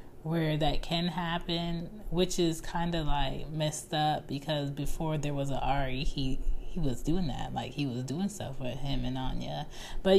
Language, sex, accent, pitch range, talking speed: English, female, American, 135-165 Hz, 190 wpm